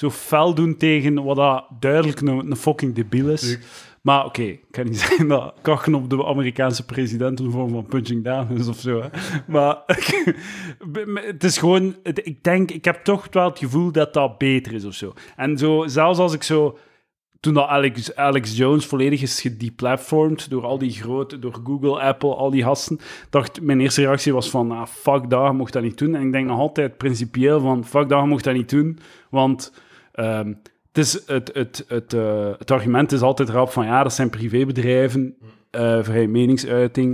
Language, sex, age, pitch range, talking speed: Dutch, male, 30-49, 120-145 Hz, 190 wpm